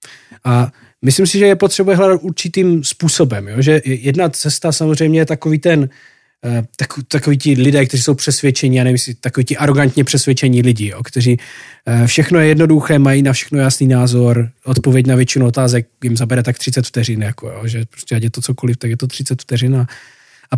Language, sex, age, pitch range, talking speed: Slovak, male, 20-39, 125-165 Hz, 180 wpm